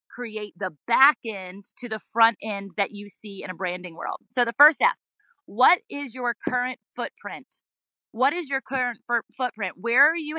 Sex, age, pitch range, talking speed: female, 20-39, 195-245 Hz, 185 wpm